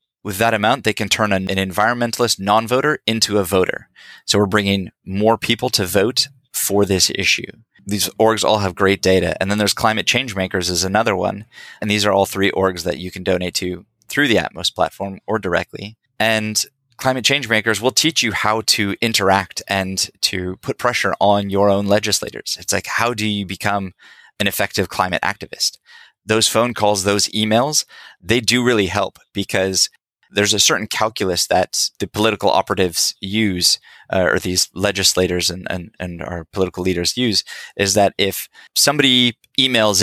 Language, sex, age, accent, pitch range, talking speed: English, male, 20-39, American, 95-115 Hz, 175 wpm